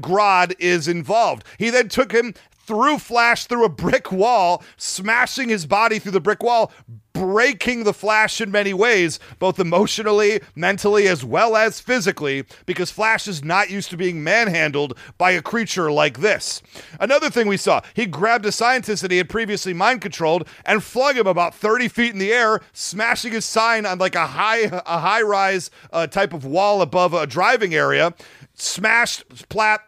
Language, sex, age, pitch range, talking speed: English, male, 40-59, 180-225 Hz, 175 wpm